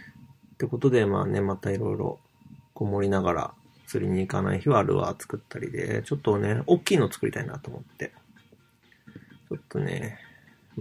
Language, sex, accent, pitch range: Japanese, male, native, 105-145 Hz